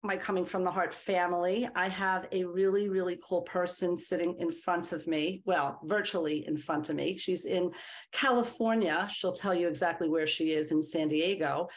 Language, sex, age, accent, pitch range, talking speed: English, female, 40-59, American, 175-200 Hz, 190 wpm